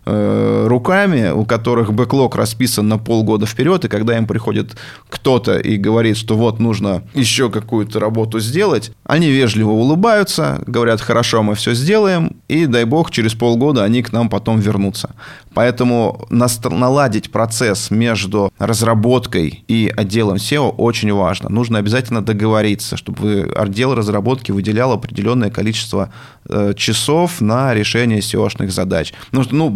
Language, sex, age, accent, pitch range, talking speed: Russian, male, 20-39, native, 105-125 Hz, 135 wpm